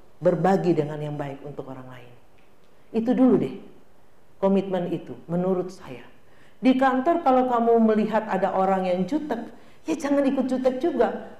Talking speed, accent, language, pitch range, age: 145 wpm, native, Indonesian, 155-225 Hz, 50-69